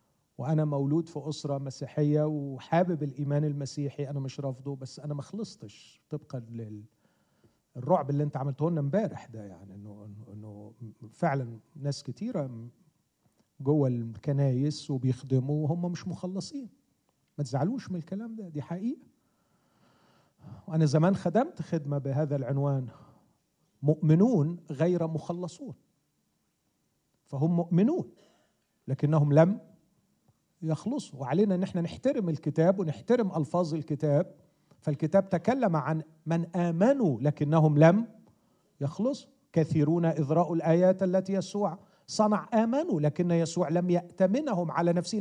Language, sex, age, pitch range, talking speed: Arabic, male, 40-59, 145-185 Hz, 110 wpm